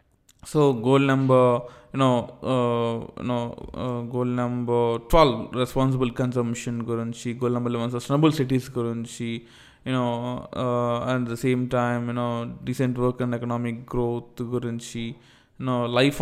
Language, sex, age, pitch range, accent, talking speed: Telugu, male, 20-39, 120-145 Hz, native, 115 wpm